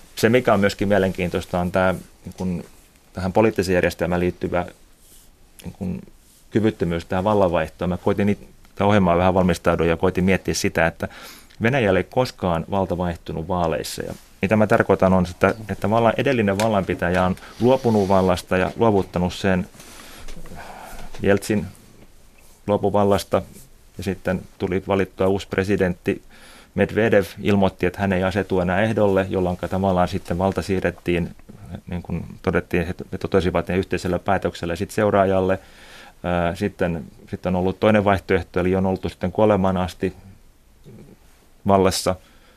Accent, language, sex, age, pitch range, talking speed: native, Finnish, male, 30-49, 90-100 Hz, 130 wpm